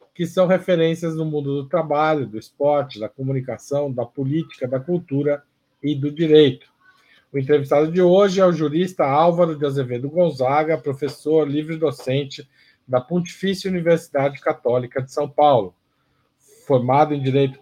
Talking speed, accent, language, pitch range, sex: 145 wpm, Brazilian, Portuguese, 135-170 Hz, male